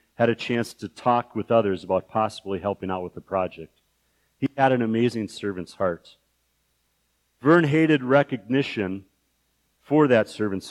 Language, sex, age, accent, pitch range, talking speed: English, male, 50-69, American, 100-135 Hz, 145 wpm